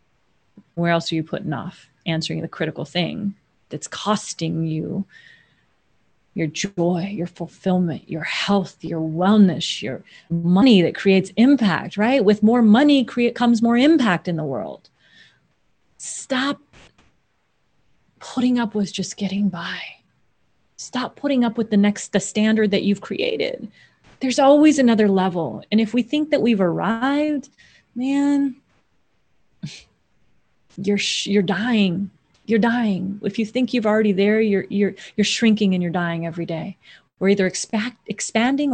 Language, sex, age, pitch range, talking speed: English, female, 30-49, 175-225 Hz, 145 wpm